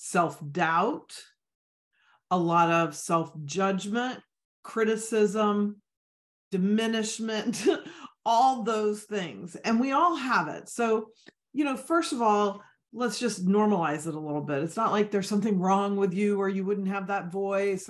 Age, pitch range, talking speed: 40-59, 185-230 Hz, 140 wpm